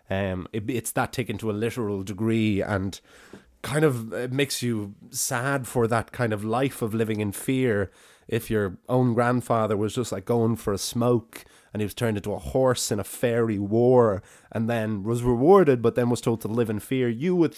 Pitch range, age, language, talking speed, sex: 105-130 Hz, 20-39, English, 210 wpm, male